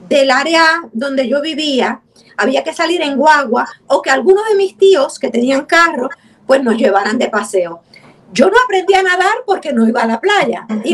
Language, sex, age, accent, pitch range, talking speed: English, female, 50-69, American, 220-360 Hz, 195 wpm